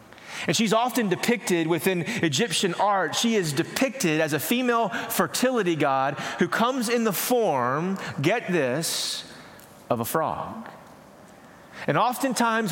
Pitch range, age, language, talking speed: 160-225 Hz, 30-49, English, 125 wpm